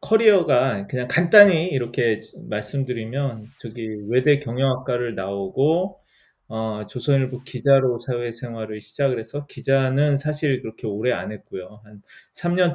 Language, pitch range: Korean, 110-140 Hz